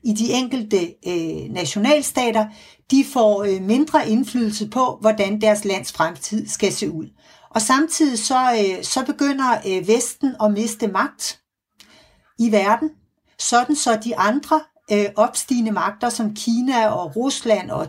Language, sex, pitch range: Danish, female, 210-260 Hz